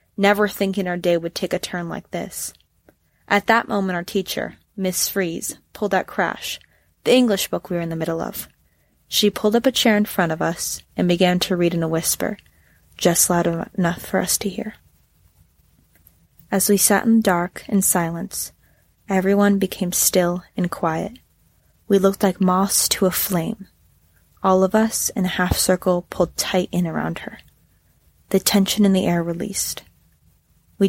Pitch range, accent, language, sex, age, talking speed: 175-205 Hz, American, English, female, 20-39, 175 wpm